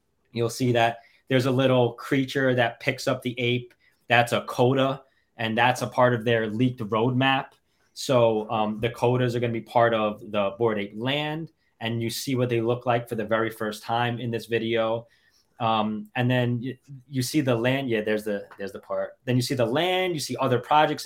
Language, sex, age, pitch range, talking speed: English, male, 20-39, 115-135 Hz, 215 wpm